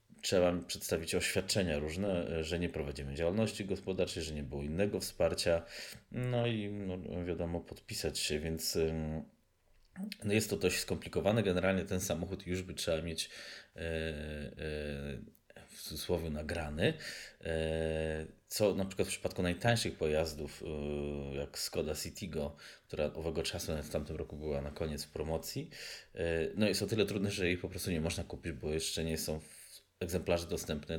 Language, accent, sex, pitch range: Polish, native, male, 80-100 Hz